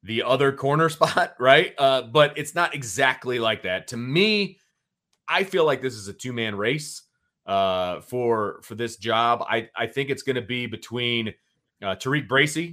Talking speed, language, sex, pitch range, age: 180 wpm, English, male, 115-135 Hz, 30-49